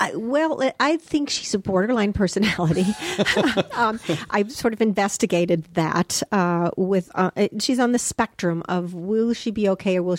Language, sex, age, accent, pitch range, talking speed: English, female, 40-59, American, 180-225 Hz, 160 wpm